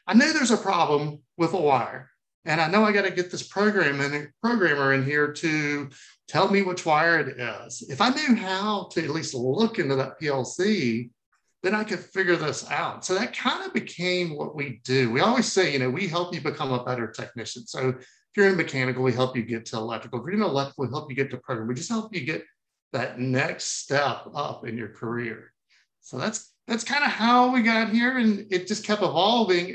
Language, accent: English, American